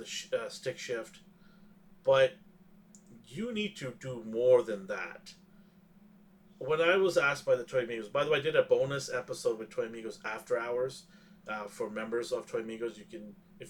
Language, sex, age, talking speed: English, male, 30-49, 190 wpm